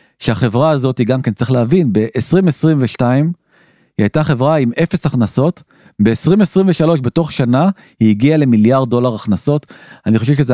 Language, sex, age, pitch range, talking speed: Hebrew, male, 40-59, 120-155 Hz, 140 wpm